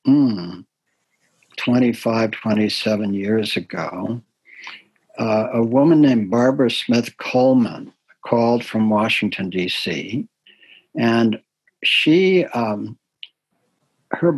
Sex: male